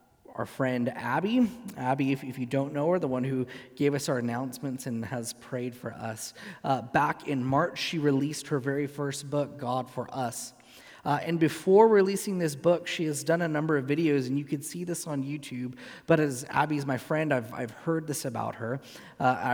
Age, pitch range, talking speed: 30-49, 125-160 Hz, 210 wpm